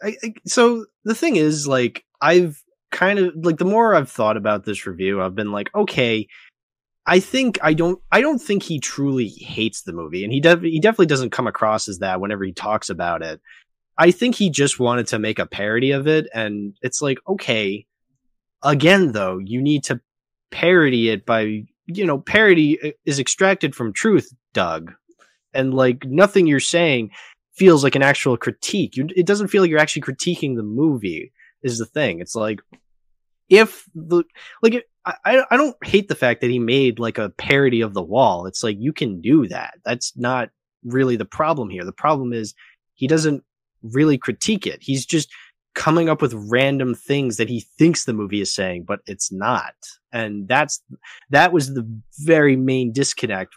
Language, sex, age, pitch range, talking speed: English, male, 20-39, 115-165 Hz, 190 wpm